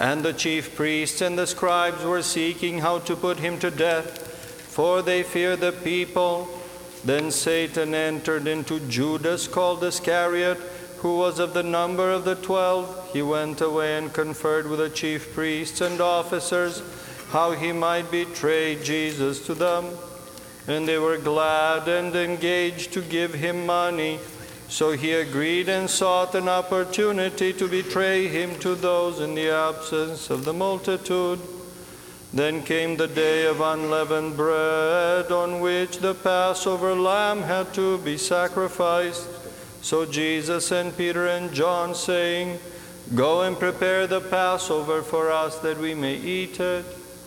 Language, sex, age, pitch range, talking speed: English, male, 50-69, 155-180 Hz, 145 wpm